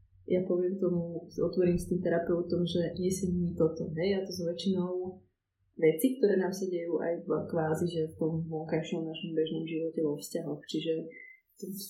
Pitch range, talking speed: 155-175 Hz, 180 wpm